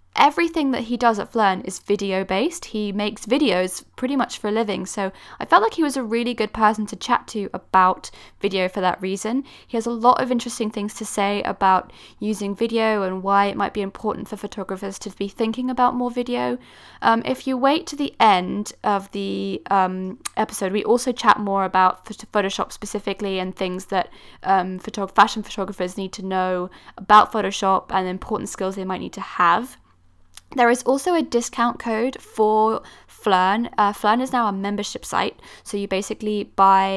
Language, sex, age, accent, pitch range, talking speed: English, female, 10-29, British, 190-225 Hz, 190 wpm